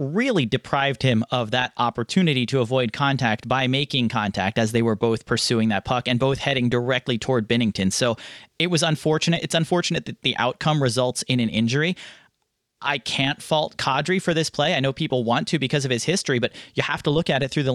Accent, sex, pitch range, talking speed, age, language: American, male, 120-155 Hz, 215 wpm, 30-49, English